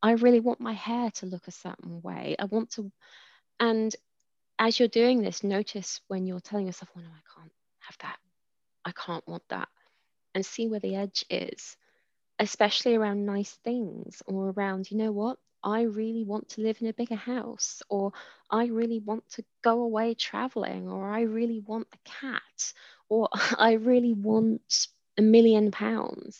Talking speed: 175 wpm